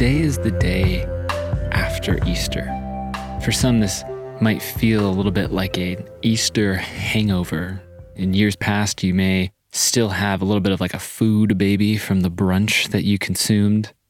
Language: English